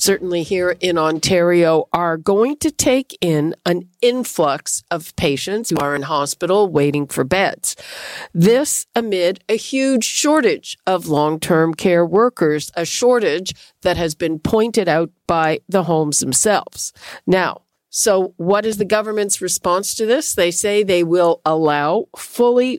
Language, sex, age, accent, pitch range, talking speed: English, female, 50-69, American, 165-215 Hz, 145 wpm